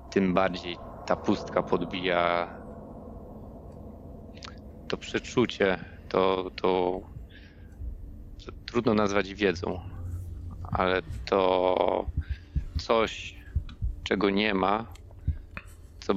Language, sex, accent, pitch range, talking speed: Polish, male, native, 85-95 Hz, 75 wpm